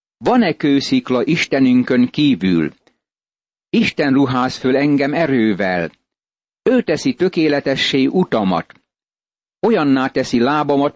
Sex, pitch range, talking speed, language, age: male, 120-150 Hz, 90 wpm, Hungarian, 60-79